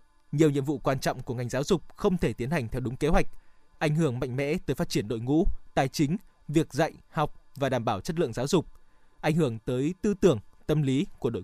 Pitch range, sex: 135-170 Hz, male